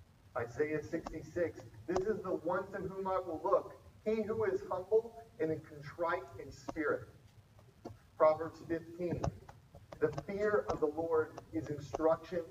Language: English